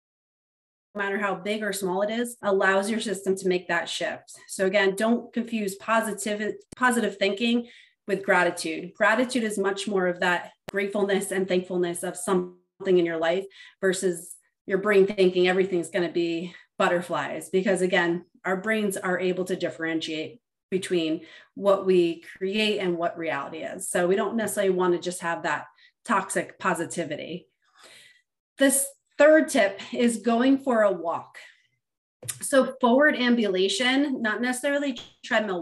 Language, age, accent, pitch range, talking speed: English, 30-49, American, 180-215 Hz, 145 wpm